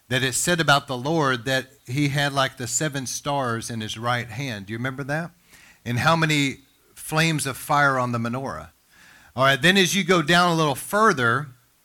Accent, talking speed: American, 205 wpm